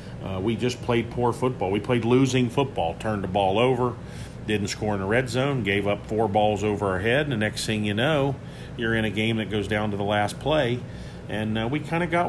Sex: male